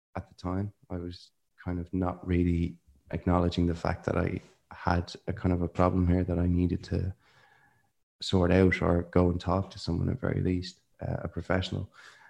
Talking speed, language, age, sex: 190 wpm, English, 20-39, male